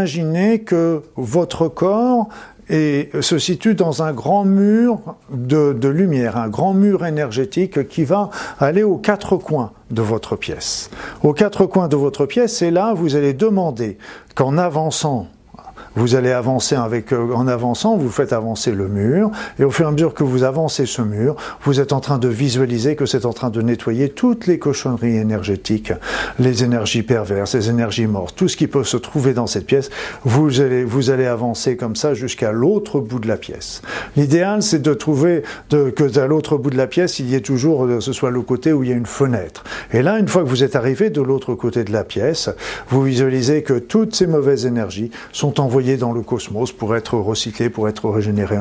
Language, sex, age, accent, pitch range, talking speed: French, male, 50-69, French, 120-170 Hz, 200 wpm